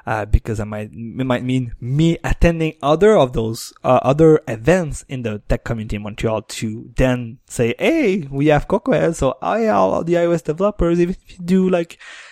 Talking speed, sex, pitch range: 185 wpm, male, 120-155 Hz